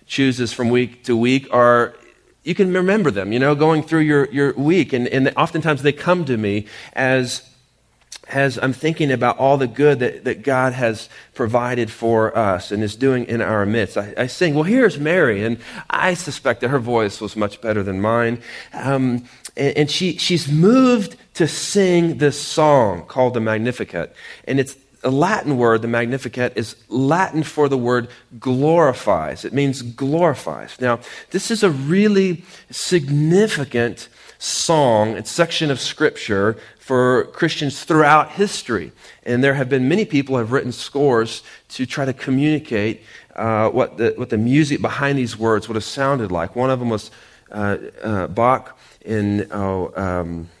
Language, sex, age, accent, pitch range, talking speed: English, male, 40-59, American, 115-150 Hz, 170 wpm